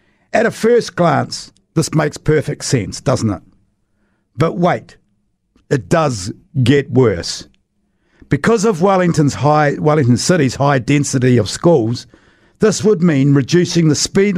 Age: 50-69